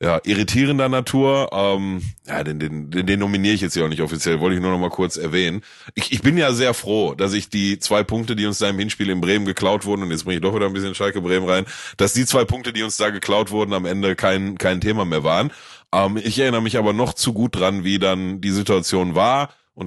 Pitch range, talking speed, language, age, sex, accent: 90-110 Hz, 255 wpm, German, 30-49, male, German